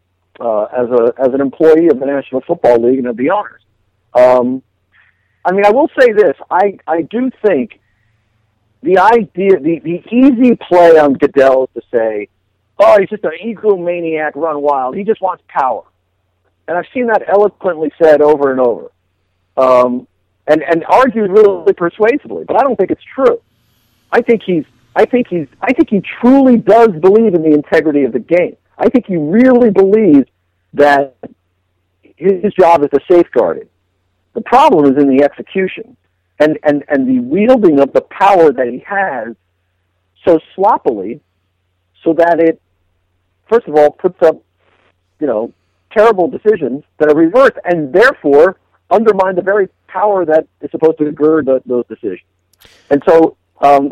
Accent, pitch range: American, 120-195 Hz